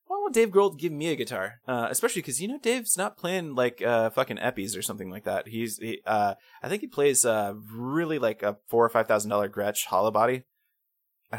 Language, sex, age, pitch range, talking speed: English, male, 20-39, 105-155 Hz, 230 wpm